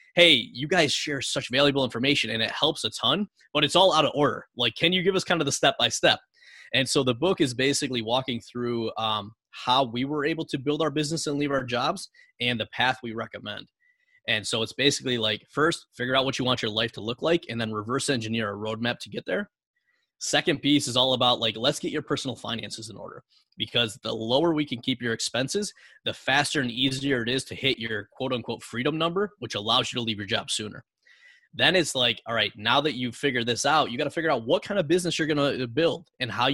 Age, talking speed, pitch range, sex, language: 20-39, 240 wpm, 115-150 Hz, male, English